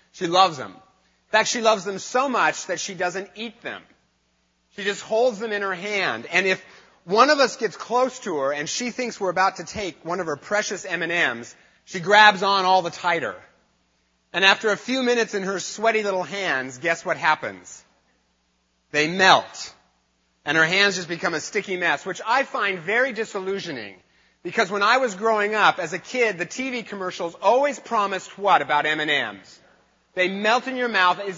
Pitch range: 165-215 Hz